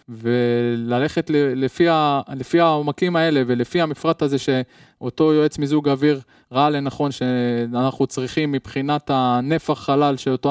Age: 20-39